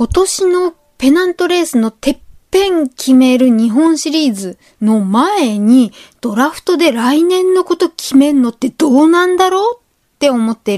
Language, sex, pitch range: Japanese, female, 230-335 Hz